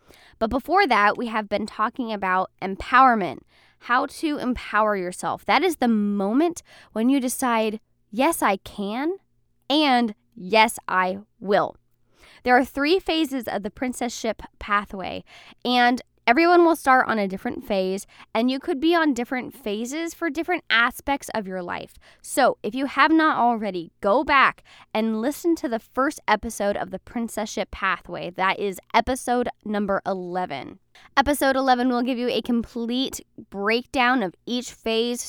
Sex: female